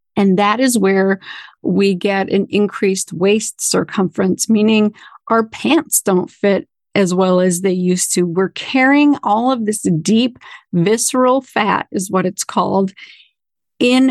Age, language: 40-59, English